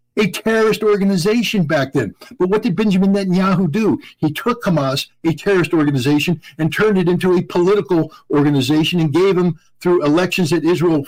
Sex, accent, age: male, American, 60-79